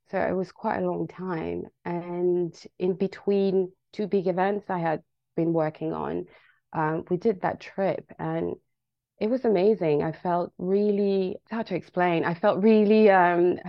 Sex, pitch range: female, 155-180 Hz